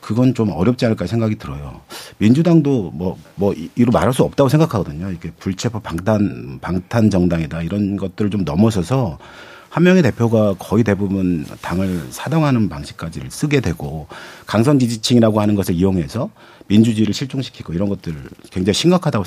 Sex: male